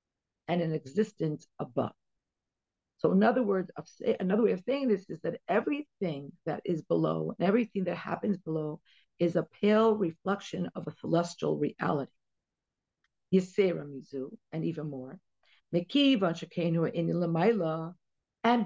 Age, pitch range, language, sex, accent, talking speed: 50-69, 175-225 Hz, English, female, American, 125 wpm